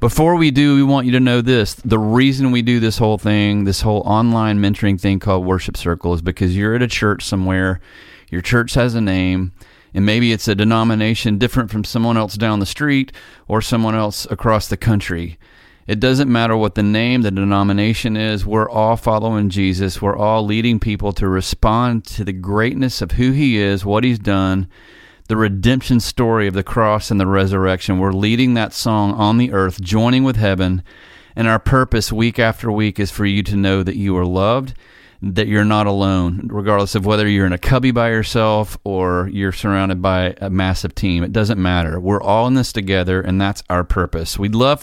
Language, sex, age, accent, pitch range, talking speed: English, male, 30-49, American, 95-115 Hz, 200 wpm